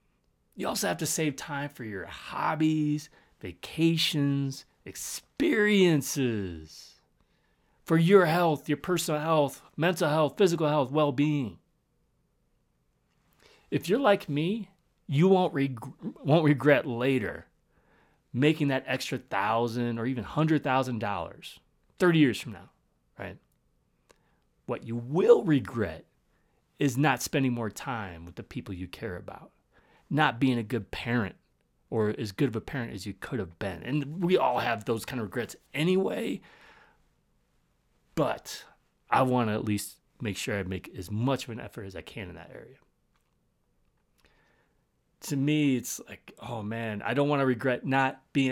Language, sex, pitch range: English, male, 110-150 Hz